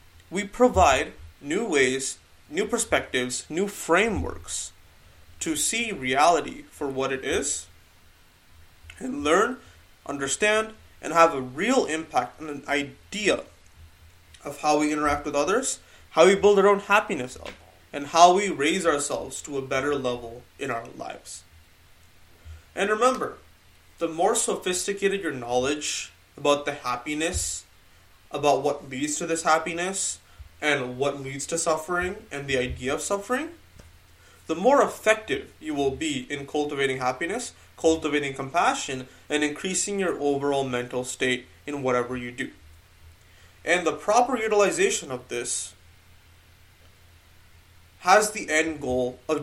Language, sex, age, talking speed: English, male, 20-39, 130 wpm